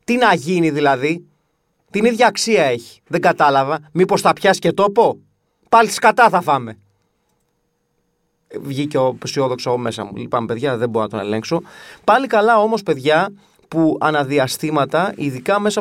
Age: 30-49